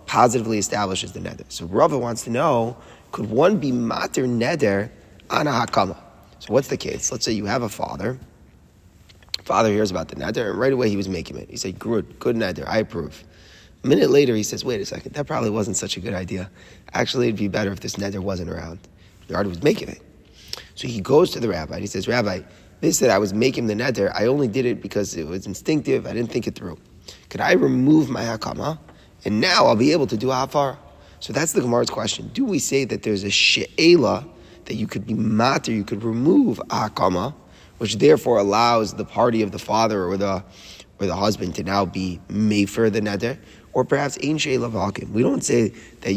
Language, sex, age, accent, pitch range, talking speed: English, male, 30-49, American, 95-120 Hz, 215 wpm